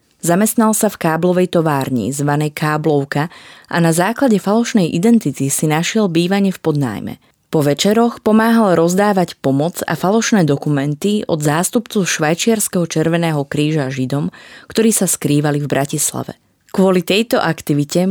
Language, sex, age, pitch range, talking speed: Slovak, female, 20-39, 150-190 Hz, 130 wpm